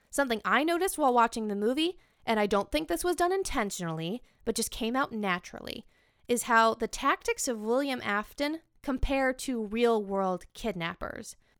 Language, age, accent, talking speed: English, 20-39, American, 160 wpm